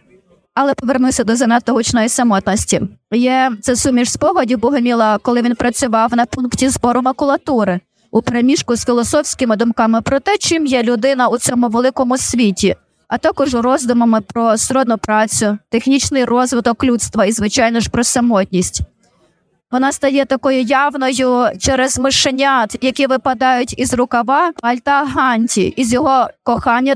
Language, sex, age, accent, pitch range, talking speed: Ukrainian, female, 20-39, native, 230-270 Hz, 135 wpm